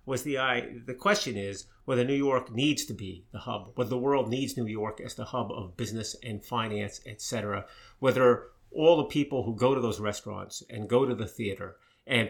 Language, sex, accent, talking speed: English, male, American, 210 wpm